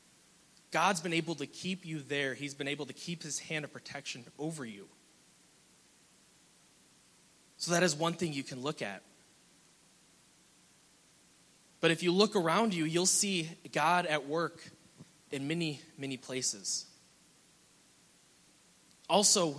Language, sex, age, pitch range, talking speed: English, male, 20-39, 145-195 Hz, 130 wpm